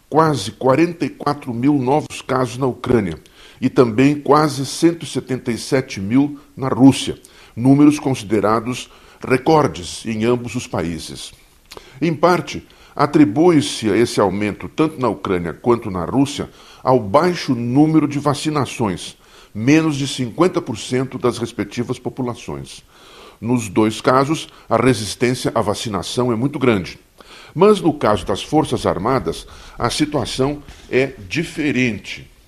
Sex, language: male, Portuguese